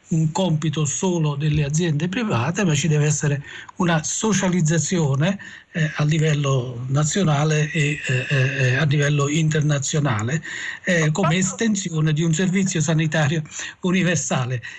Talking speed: 120 wpm